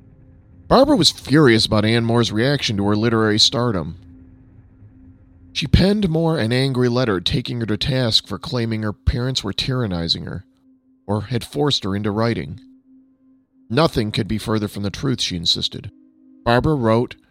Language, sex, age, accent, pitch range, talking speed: English, male, 40-59, American, 105-145 Hz, 155 wpm